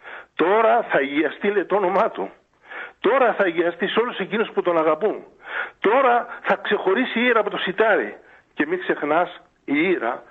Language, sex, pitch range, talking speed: Greek, male, 170-275 Hz, 170 wpm